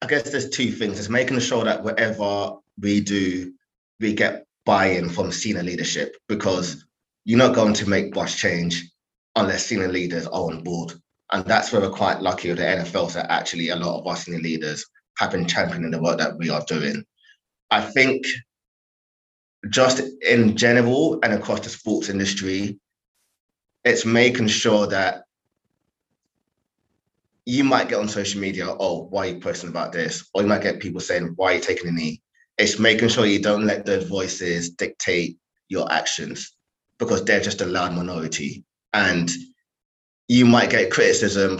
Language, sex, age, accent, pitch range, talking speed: English, male, 20-39, British, 90-120 Hz, 175 wpm